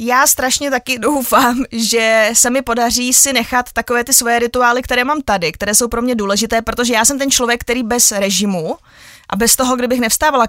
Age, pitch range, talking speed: 20-39, 205-240 Hz, 200 wpm